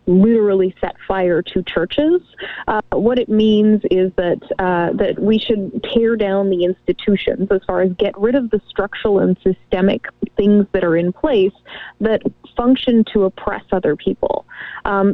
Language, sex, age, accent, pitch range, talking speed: English, female, 20-39, American, 185-220 Hz, 165 wpm